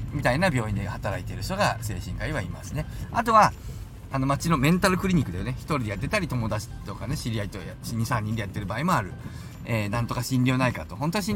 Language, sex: Japanese, male